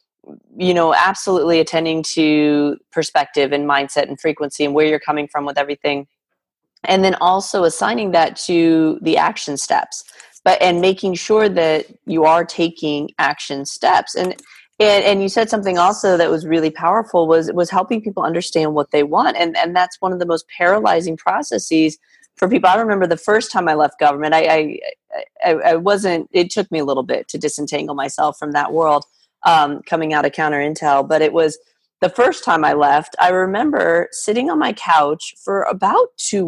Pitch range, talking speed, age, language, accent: 155-200 Hz, 190 wpm, 30-49, English, American